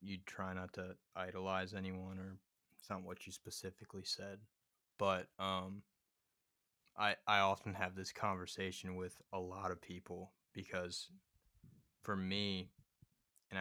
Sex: male